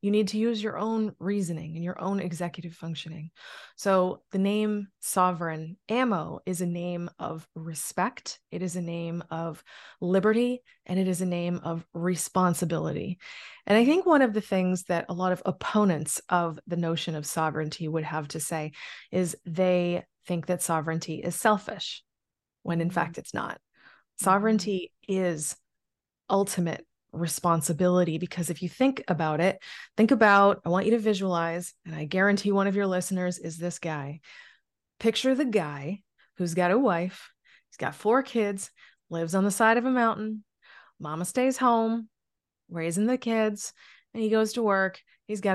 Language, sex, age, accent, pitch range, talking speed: English, female, 20-39, American, 170-210 Hz, 165 wpm